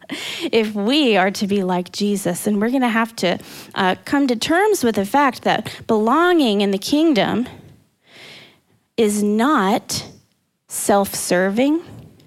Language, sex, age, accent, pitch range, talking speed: English, female, 20-39, American, 200-285 Hz, 135 wpm